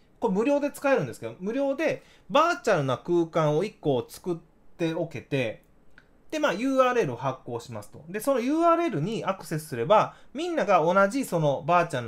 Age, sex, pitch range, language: 20-39, male, 140-230 Hz, Japanese